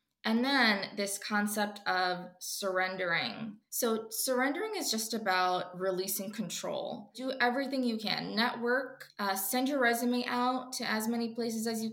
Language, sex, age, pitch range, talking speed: English, female, 20-39, 190-240 Hz, 145 wpm